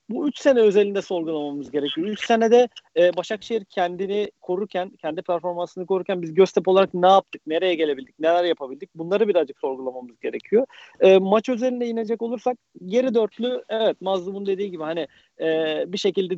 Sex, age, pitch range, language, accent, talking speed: male, 40-59, 170-210 Hz, Turkish, native, 160 wpm